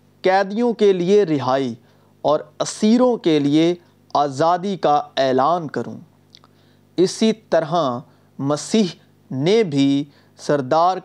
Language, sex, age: Urdu, male, 40-59